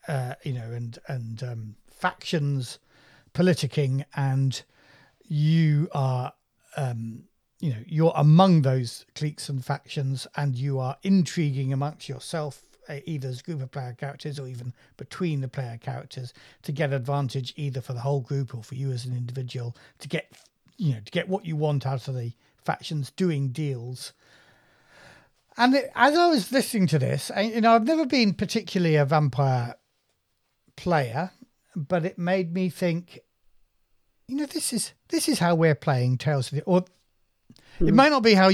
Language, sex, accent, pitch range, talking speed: English, male, British, 135-185 Hz, 170 wpm